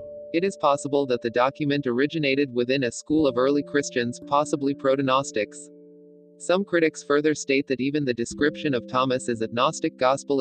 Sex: male